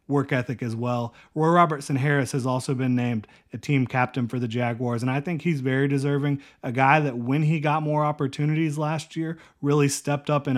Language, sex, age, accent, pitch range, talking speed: English, male, 30-49, American, 125-145 Hz, 210 wpm